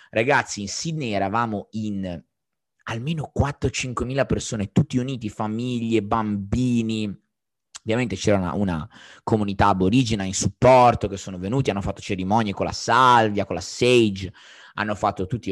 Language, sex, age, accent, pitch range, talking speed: Italian, male, 20-39, native, 95-115 Hz, 140 wpm